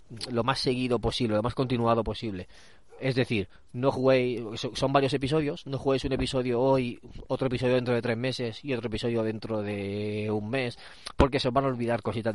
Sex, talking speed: male, 195 wpm